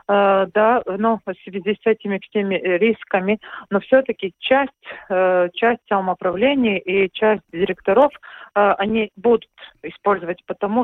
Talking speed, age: 105 wpm, 40-59